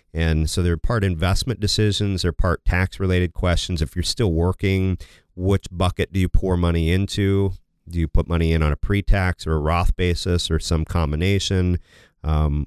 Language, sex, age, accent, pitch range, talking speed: English, male, 40-59, American, 80-90 Hz, 180 wpm